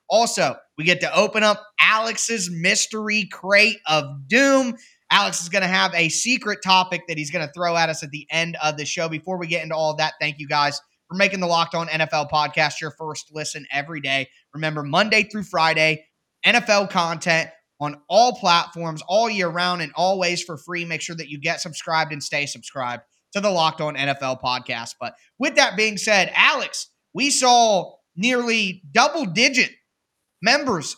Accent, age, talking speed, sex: American, 20-39, 190 wpm, male